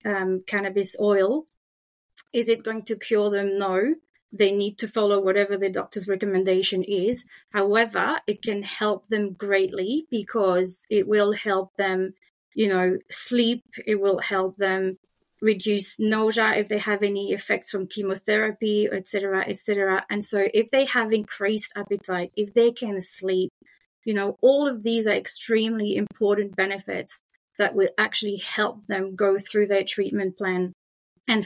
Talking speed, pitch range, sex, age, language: 155 wpm, 190-215 Hz, female, 30-49, English